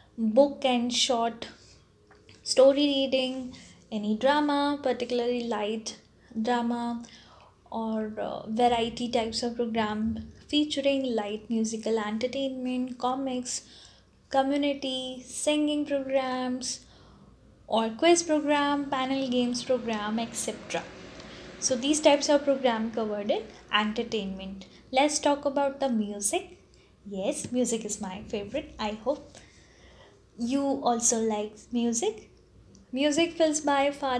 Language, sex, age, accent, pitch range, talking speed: English, female, 10-29, Indian, 215-275 Hz, 105 wpm